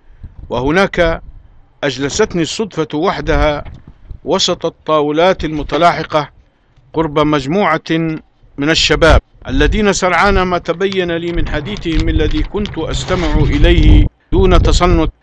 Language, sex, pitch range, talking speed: Arabic, male, 135-170 Hz, 95 wpm